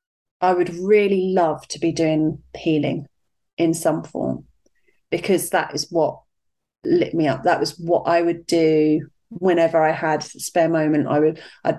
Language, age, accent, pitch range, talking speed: English, 30-49, British, 165-215 Hz, 170 wpm